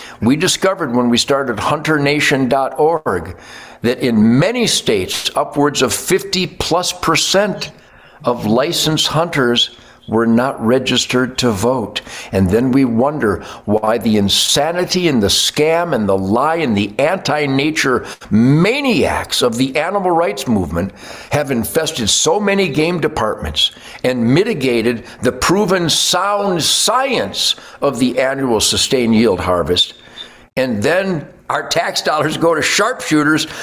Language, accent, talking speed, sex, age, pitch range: English, American, 125 wpm, male, 60-79, 115-165 Hz